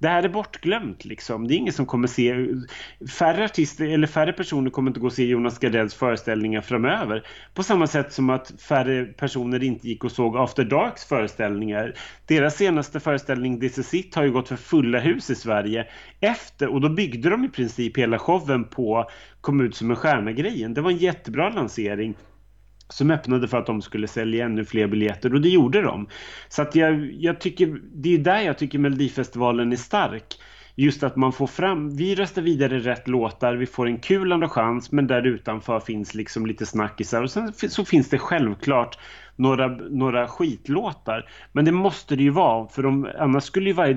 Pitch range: 115-150 Hz